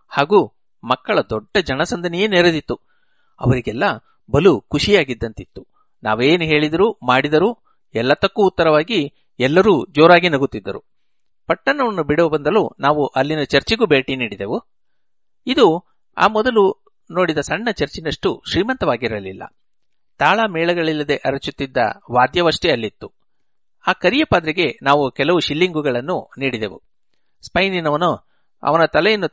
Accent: native